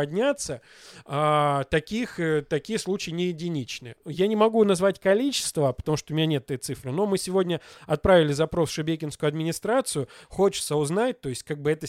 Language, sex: Russian, male